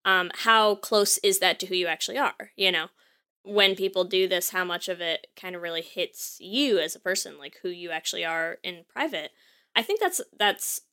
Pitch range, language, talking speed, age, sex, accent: 185-255 Hz, English, 215 wpm, 20-39, female, American